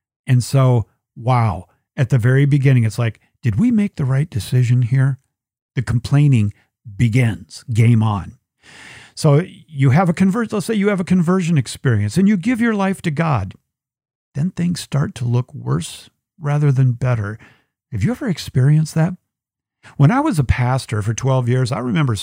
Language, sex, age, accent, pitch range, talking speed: English, male, 50-69, American, 115-150 Hz, 175 wpm